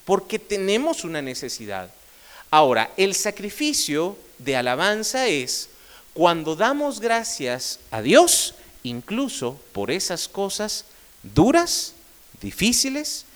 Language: Spanish